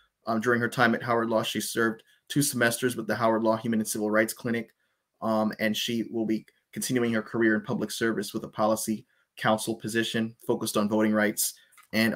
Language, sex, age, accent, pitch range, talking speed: English, male, 20-39, American, 110-120 Hz, 200 wpm